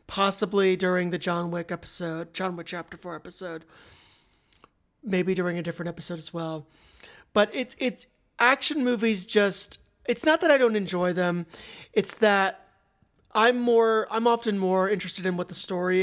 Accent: American